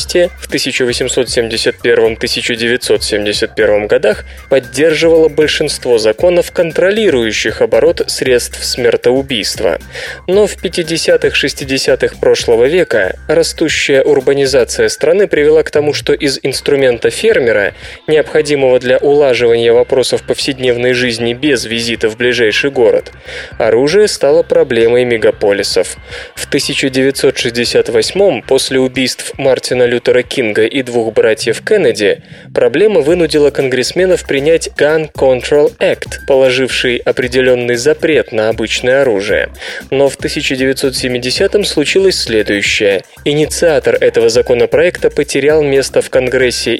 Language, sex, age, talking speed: Russian, male, 20-39, 95 wpm